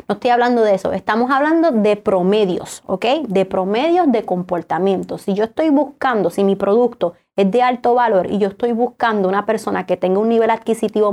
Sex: female